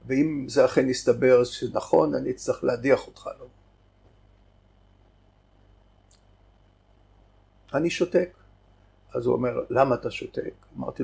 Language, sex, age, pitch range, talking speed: Hebrew, male, 60-79, 105-165 Hz, 105 wpm